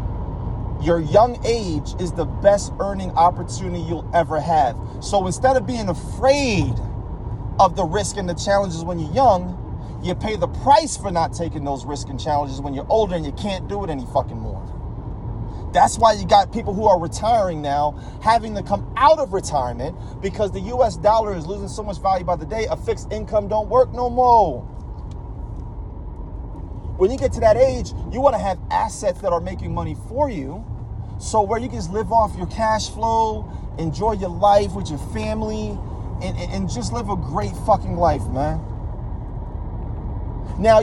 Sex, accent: male, American